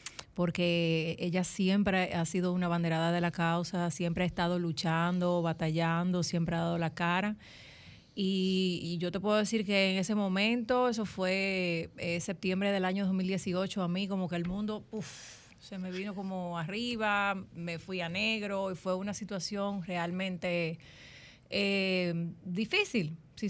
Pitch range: 175-195 Hz